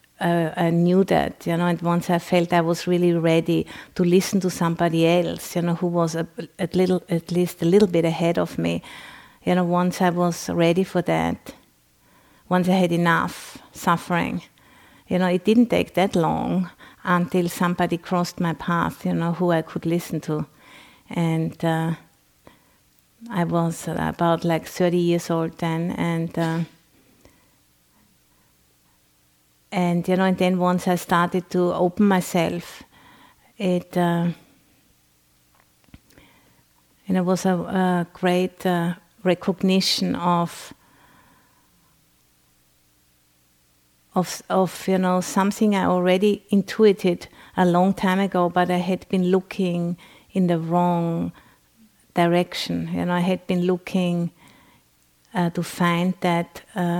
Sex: female